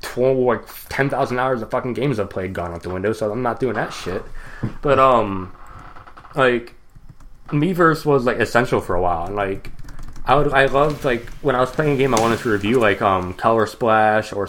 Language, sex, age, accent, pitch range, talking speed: English, male, 20-39, American, 105-130 Hz, 210 wpm